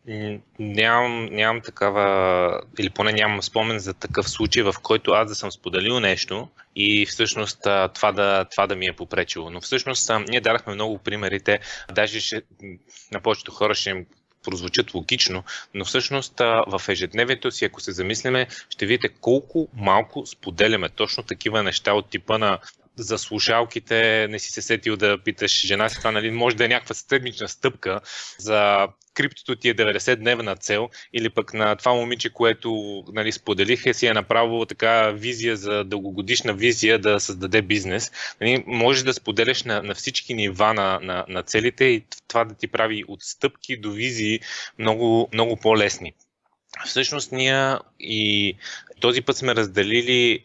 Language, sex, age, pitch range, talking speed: Bulgarian, male, 20-39, 105-120 Hz, 160 wpm